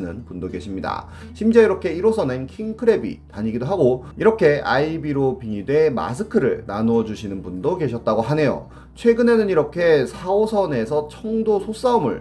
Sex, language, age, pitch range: male, Korean, 30-49, 115-195 Hz